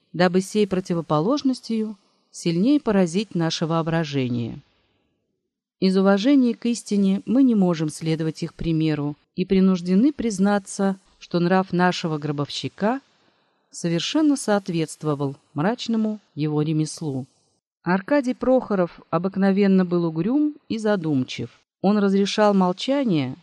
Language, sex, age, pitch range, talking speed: Russian, female, 40-59, 165-240 Hz, 100 wpm